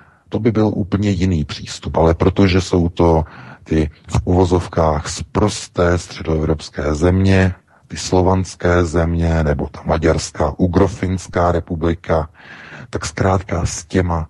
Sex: male